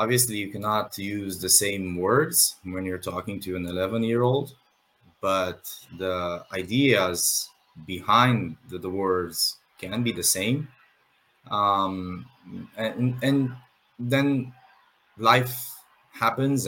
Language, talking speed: English, 115 wpm